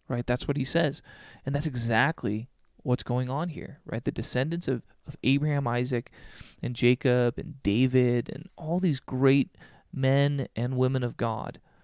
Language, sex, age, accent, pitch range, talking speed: English, male, 30-49, American, 120-150 Hz, 160 wpm